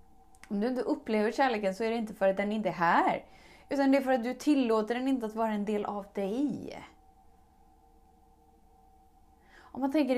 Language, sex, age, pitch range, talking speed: Swedish, female, 30-49, 190-240 Hz, 195 wpm